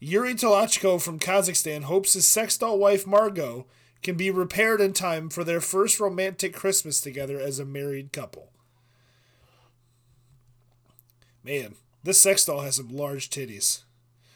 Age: 30-49